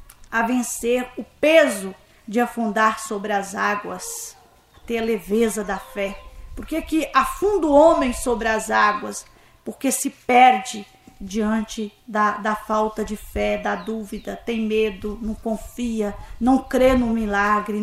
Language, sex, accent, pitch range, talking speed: Portuguese, female, Brazilian, 210-270 Hz, 140 wpm